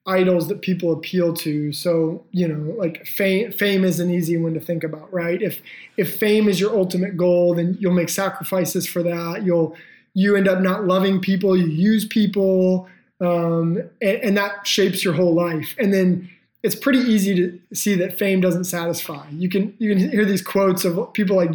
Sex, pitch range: male, 170-200 Hz